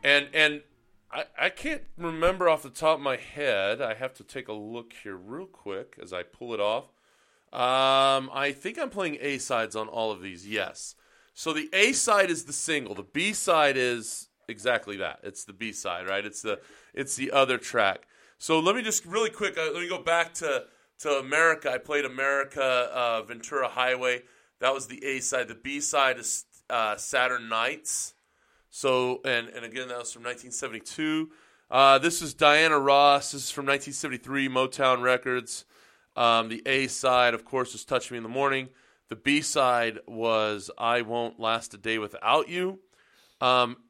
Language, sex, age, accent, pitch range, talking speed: English, male, 30-49, American, 115-145 Hz, 180 wpm